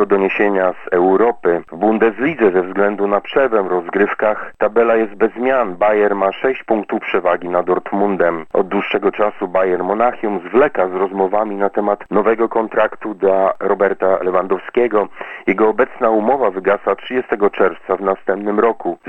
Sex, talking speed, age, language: male, 150 wpm, 40-59, Polish